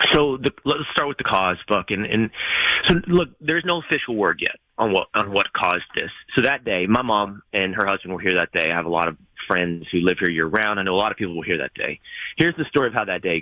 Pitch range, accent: 90-135 Hz, American